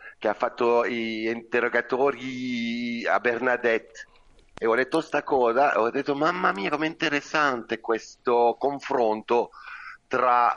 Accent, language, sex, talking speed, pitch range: native, Italian, male, 125 wpm, 115-150 Hz